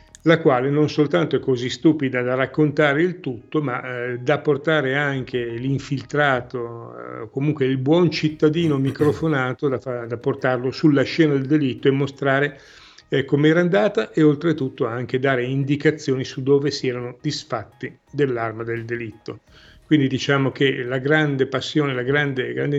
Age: 40-59